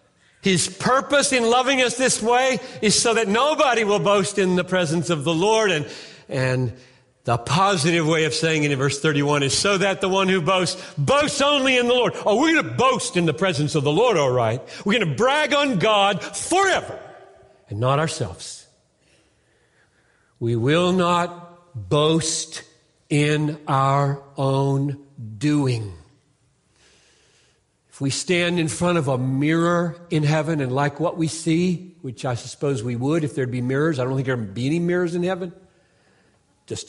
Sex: male